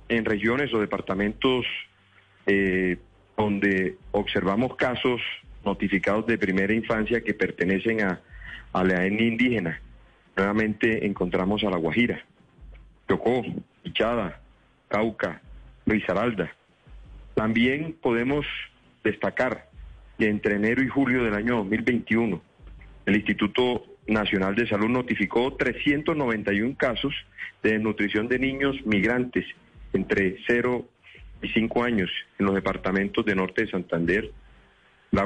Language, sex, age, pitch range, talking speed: Spanish, male, 40-59, 95-115 Hz, 110 wpm